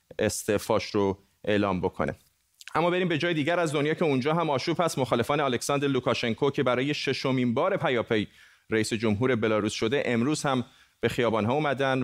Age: 30-49